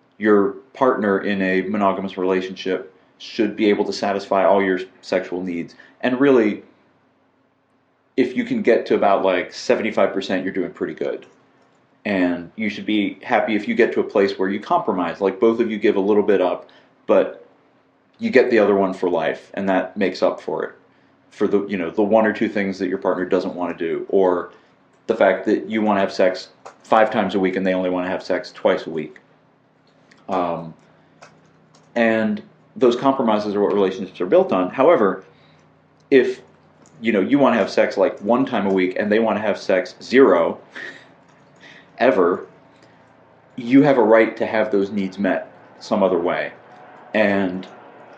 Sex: male